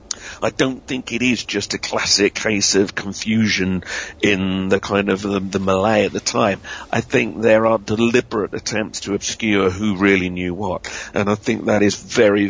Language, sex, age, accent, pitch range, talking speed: English, male, 50-69, British, 100-120 Hz, 185 wpm